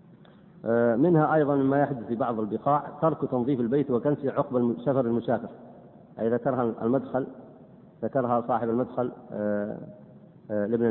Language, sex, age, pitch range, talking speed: Arabic, male, 40-59, 115-165 Hz, 115 wpm